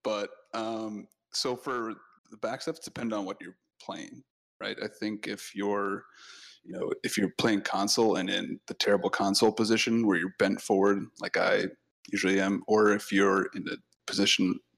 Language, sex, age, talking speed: English, male, 20-39, 180 wpm